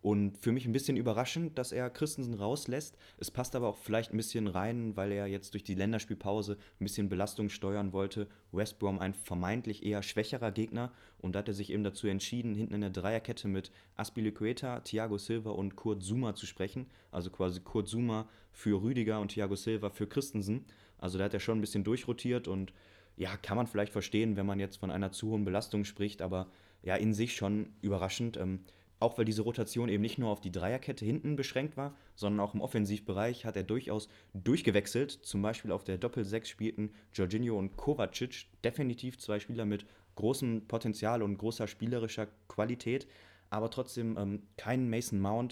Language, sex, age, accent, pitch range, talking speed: German, male, 20-39, German, 100-115 Hz, 190 wpm